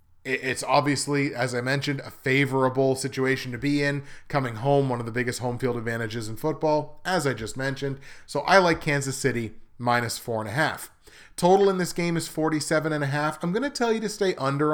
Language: English